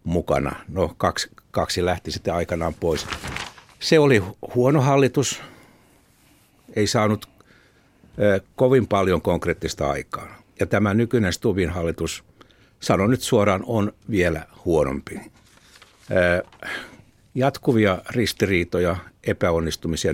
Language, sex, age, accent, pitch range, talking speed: Finnish, male, 60-79, native, 90-115 Hz, 100 wpm